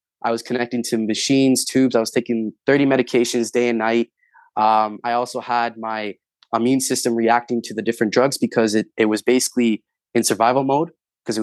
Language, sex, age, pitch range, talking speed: English, male, 20-39, 110-125 Hz, 190 wpm